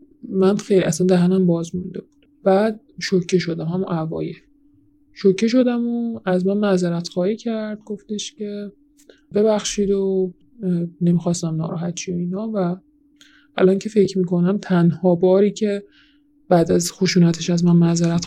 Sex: male